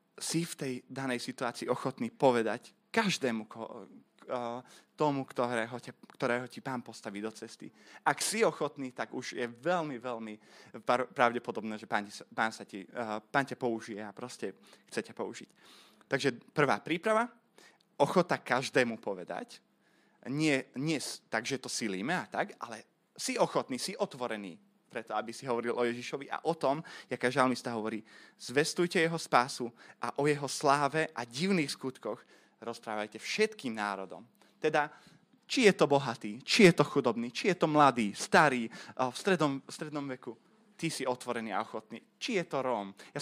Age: 20-39